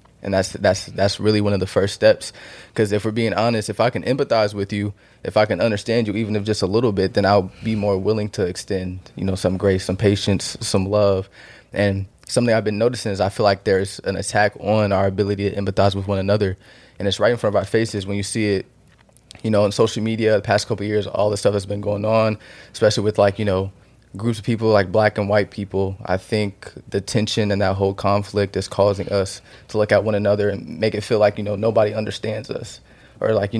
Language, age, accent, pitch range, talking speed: English, 20-39, American, 100-110 Hz, 245 wpm